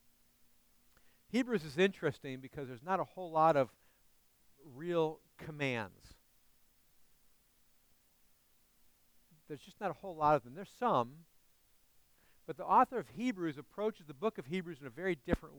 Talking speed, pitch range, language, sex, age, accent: 140 wpm, 135-185 Hz, English, male, 60-79, American